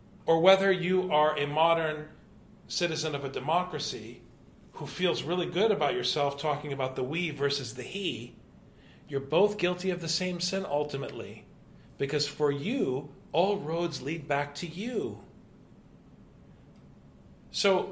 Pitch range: 130-185 Hz